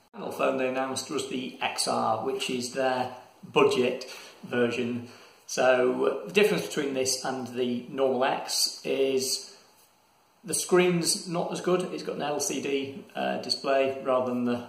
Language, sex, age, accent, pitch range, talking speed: English, male, 40-59, British, 115-140 Hz, 145 wpm